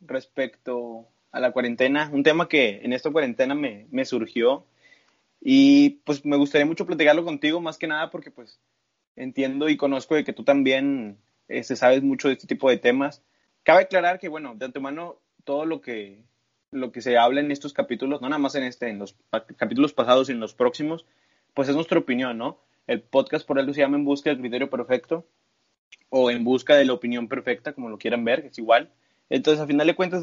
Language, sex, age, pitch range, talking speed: Spanish, male, 20-39, 125-165 Hz, 210 wpm